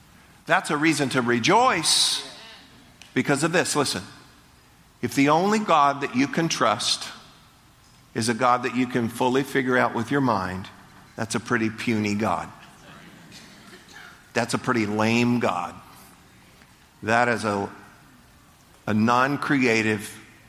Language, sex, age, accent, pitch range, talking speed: English, male, 50-69, American, 105-130 Hz, 130 wpm